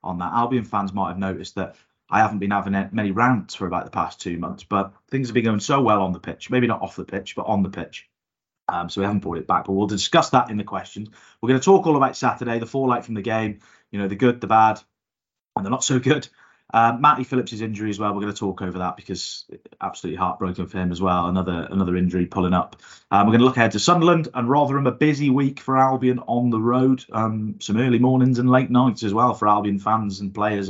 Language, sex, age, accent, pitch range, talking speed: English, male, 30-49, British, 95-125 Hz, 255 wpm